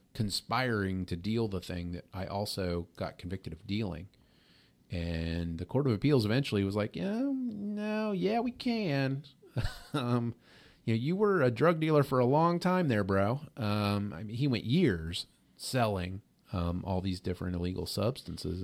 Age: 30-49